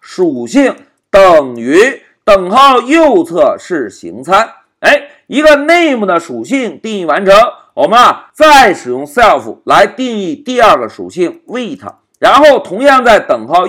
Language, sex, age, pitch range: Chinese, male, 50-69, 210-305 Hz